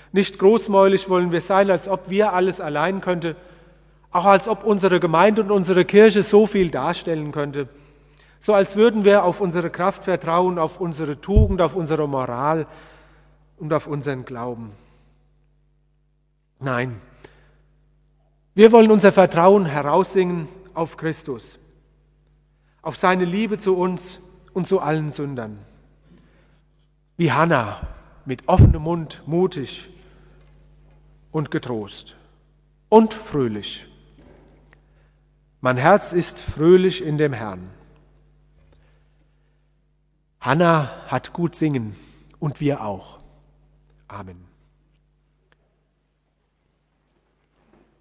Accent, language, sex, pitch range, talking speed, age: German, German, male, 135-180 Hz, 105 wpm, 40-59